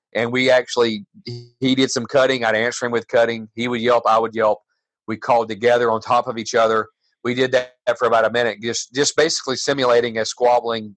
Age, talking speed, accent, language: 40-59, 220 wpm, American, English